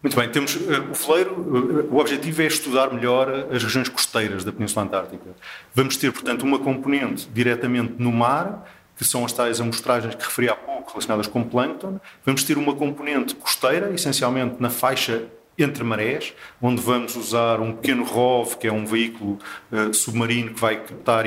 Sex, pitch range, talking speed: male, 120-145 Hz, 175 wpm